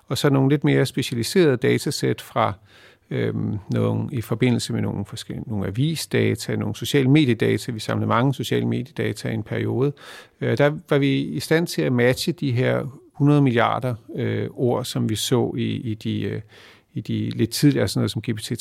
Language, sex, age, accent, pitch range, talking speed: Danish, male, 50-69, native, 115-145 Hz, 190 wpm